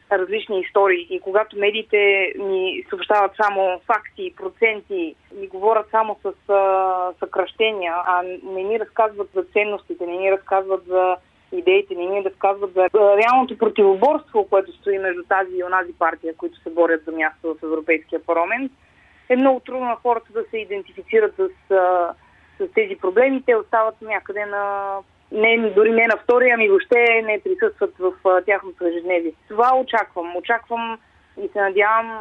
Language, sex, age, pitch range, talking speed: Bulgarian, female, 20-39, 180-225 Hz, 155 wpm